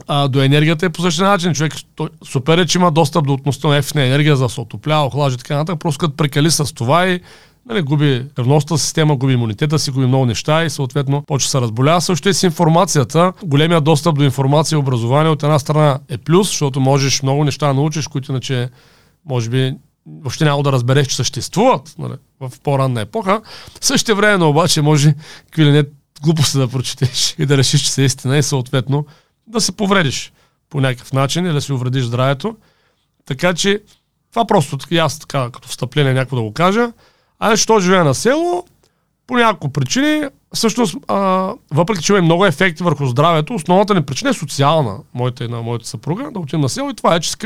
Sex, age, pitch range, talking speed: male, 40-59, 135-175 Hz, 200 wpm